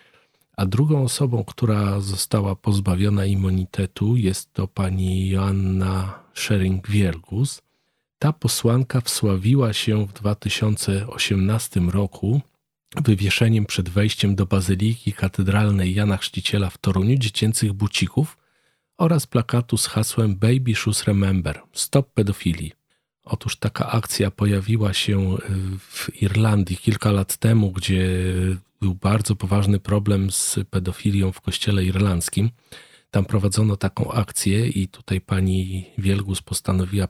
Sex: male